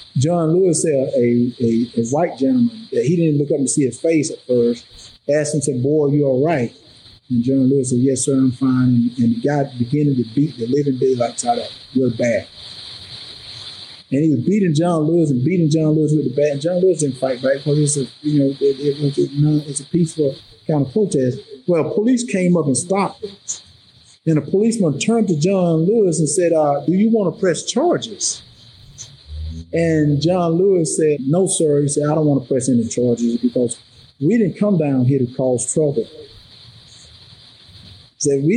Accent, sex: American, male